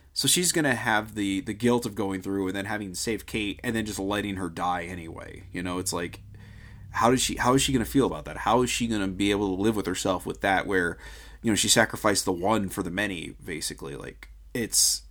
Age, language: 30-49, English